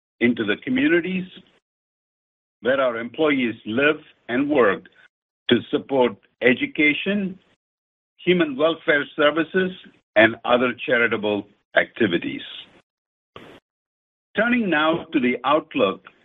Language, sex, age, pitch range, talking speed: English, male, 60-79, 125-185 Hz, 90 wpm